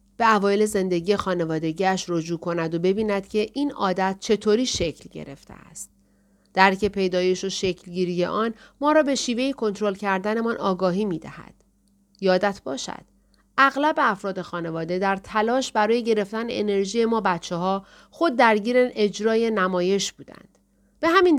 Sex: female